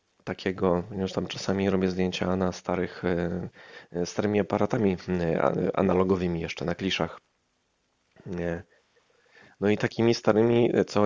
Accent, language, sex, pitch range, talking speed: native, Polish, male, 90-105 Hz, 105 wpm